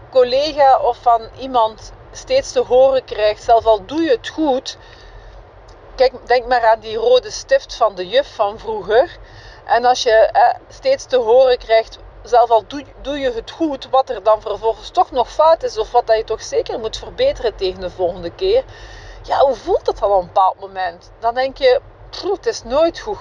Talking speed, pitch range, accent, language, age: 190 wpm, 220-330 Hz, Dutch, Dutch, 40-59